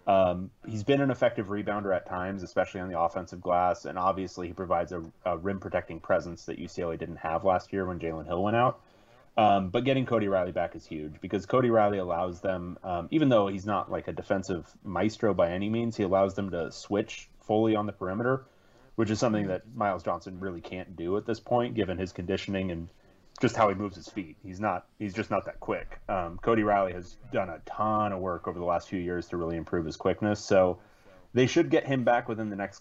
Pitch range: 90-105 Hz